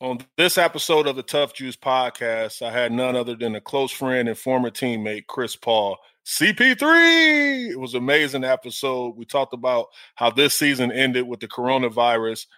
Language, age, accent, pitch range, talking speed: English, 20-39, American, 115-135 Hz, 175 wpm